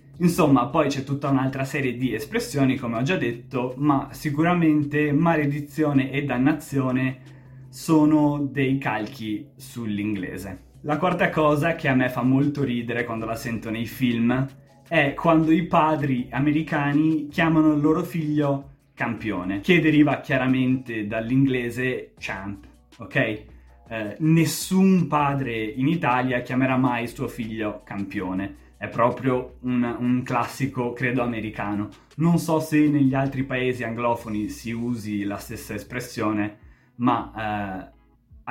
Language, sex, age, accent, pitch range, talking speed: Italian, male, 20-39, native, 115-150 Hz, 130 wpm